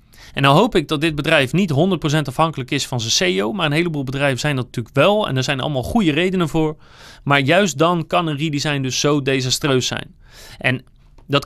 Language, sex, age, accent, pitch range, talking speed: Dutch, male, 30-49, Dutch, 140-180 Hz, 215 wpm